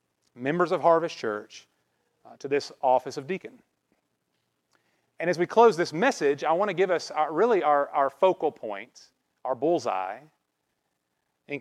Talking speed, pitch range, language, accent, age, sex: 155 wpm, 115-175 Hz, English, American, 40-59, male